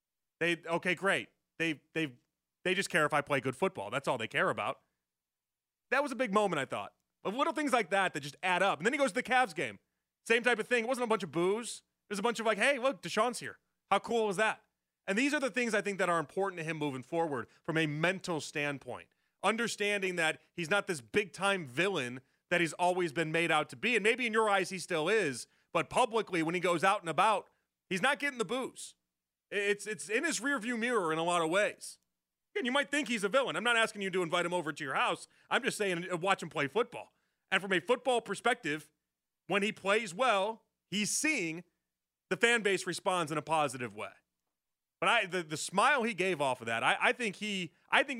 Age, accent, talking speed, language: 30-49, American, 240 wpm, English